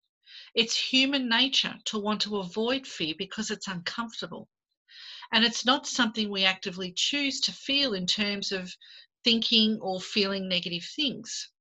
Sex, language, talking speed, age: female, English, 145 wpm, 40-59